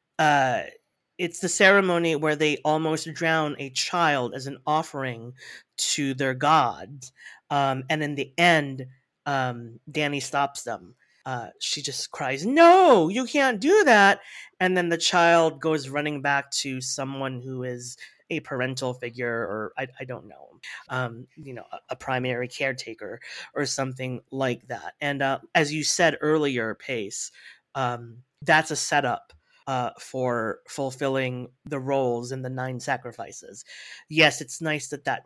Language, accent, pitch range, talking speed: English, American, 130-155 Hz, 150 wpm